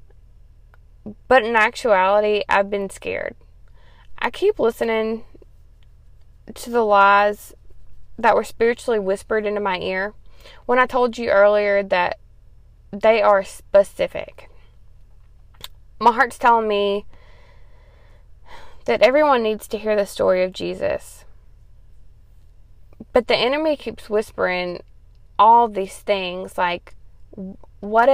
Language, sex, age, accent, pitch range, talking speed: English, female, 20-39, American, 195-230 Hz, 110 wpm